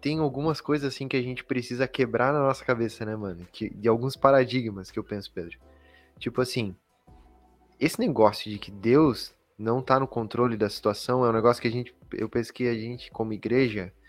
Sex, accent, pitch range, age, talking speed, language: male, Brazilian, 115-150 Hz, 20-39, 200 wpm, Portuguese